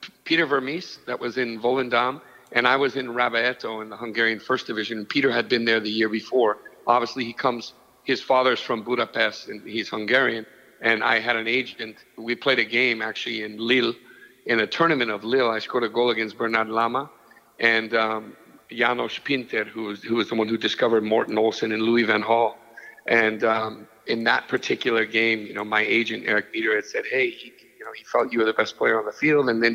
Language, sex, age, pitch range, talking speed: English, male, 50-69, 115-130 Hz, 210 wpm